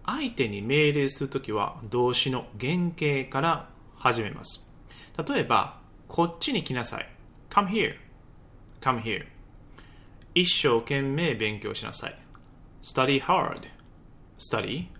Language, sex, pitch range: Japanese, male, 120-175 Hz